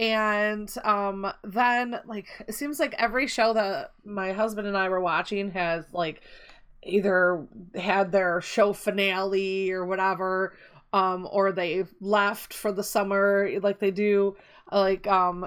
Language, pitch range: English, 195-235 Hz